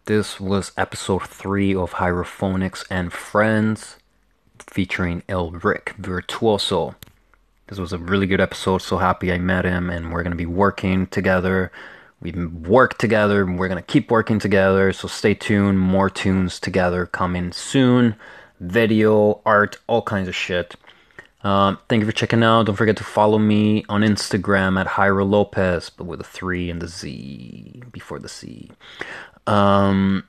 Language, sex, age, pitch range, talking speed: English, male, 20-39, 90-110 Hz, 160 wpm